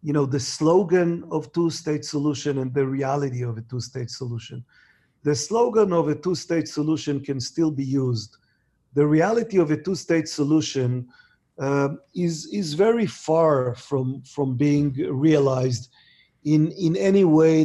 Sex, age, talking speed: male, 40-59, 145 wpm